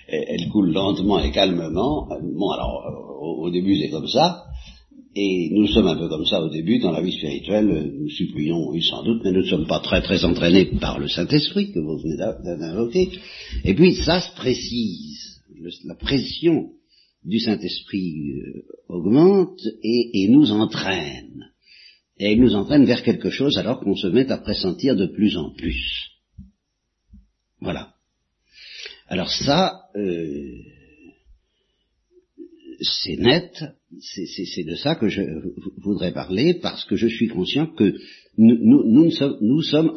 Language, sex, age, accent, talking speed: Italian, male, 60-79, French, 145 wpm